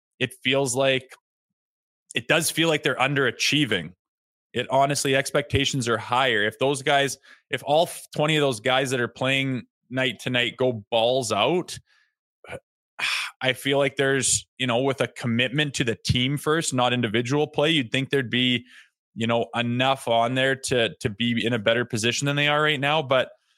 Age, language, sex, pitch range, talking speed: 20-39, English, male, 120-145 Hz, 175 wpm